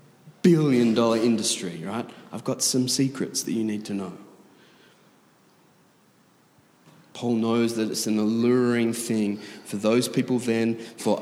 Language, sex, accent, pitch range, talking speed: English, male, Australian, 110-145 Hz, 135 wpm